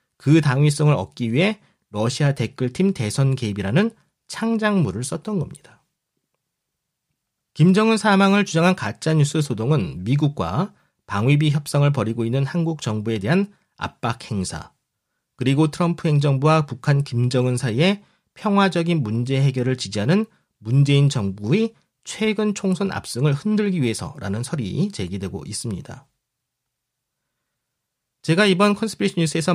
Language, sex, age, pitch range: Korean, male, 40-59, 125-175 Hz